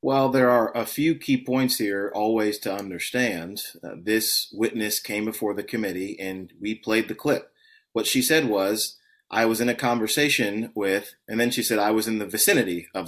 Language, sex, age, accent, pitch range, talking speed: English, male, 30-49, American, 105-125 Hz, 195 wpm